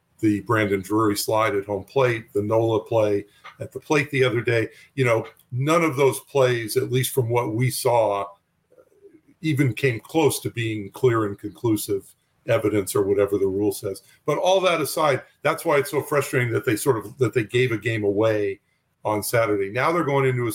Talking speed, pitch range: 200 wpm, 105-135 Hz